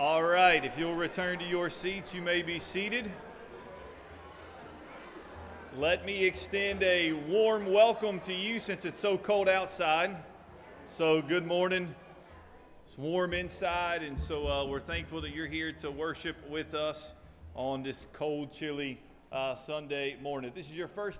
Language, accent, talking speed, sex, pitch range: English, American, 155 wpm, male, 140-180 Hz